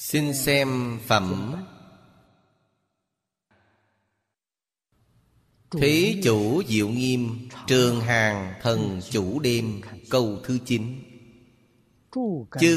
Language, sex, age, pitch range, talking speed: Vietnamese, male, 30-49, 100-125 Hz, 75 wpm